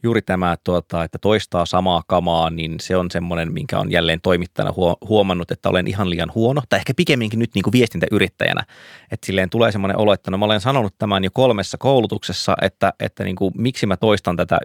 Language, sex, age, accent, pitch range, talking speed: Finnish, male, 20-39, native, 90-115 Hz, 195 wpm